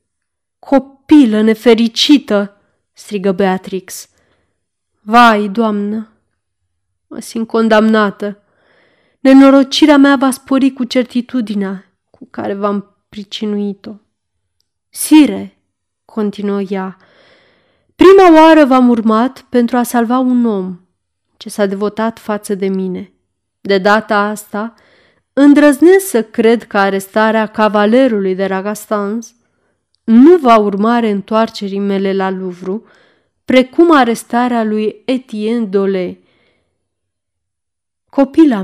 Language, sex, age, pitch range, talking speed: Romanian, female, 20-39, 190-235 Hz, 95 wpm